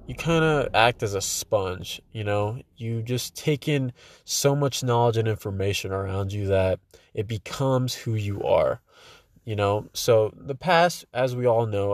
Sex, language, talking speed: male, English, 175 wpm